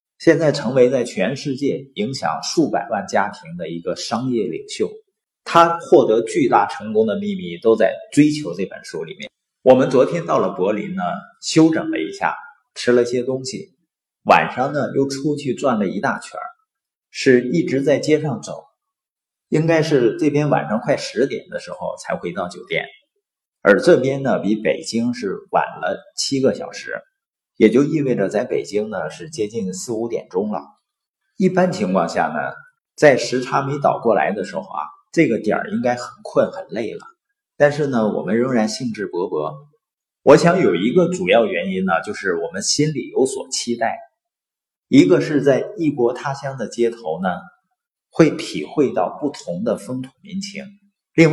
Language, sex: Chinese, male